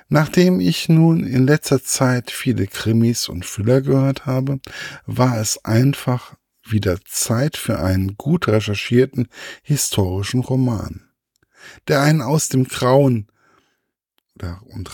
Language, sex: German, male